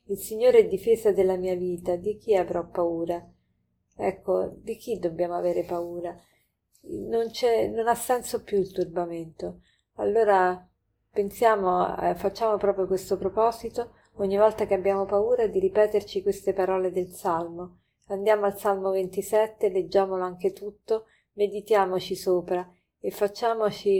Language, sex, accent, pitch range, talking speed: Italian, female, native, 180-210 Hz, 135 wpm